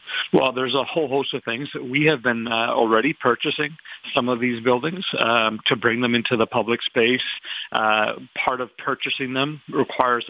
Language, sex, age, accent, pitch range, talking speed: English, male, 50-69, American, 115-130 Hz, 180 wpm